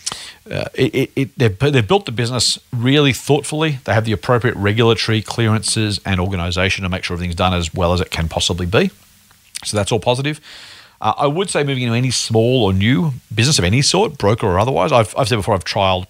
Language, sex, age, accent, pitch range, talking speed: English, male, 40-59, Australian, 95-130 Hz, 215 wpm